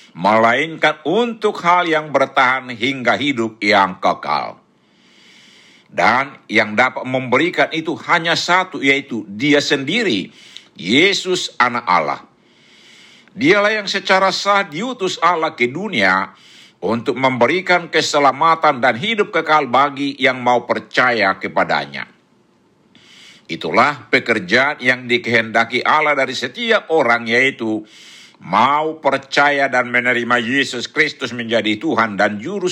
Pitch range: 120-165 Hz